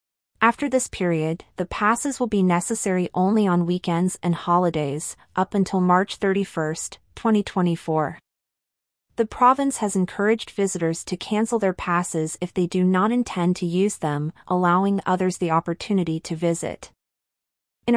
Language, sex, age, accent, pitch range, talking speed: English, female, 30-49, American, 170-205 Hz, 140 wpm